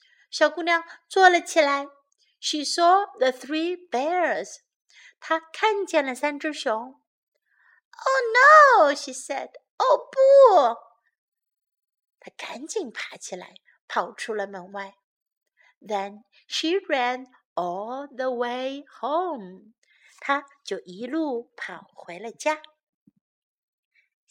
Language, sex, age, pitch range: Chinese, female, 50-69, 230-315 Hz